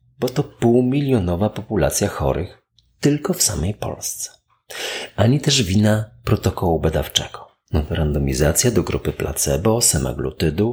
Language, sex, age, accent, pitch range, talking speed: Polish, male, 40-59, native, 80-130 Hz, 105 wpm